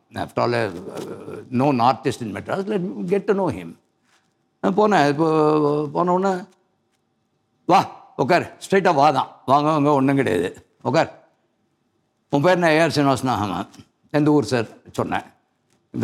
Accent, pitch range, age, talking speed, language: native, 120-175 Hz, 60-79, 125 wpm, Tamil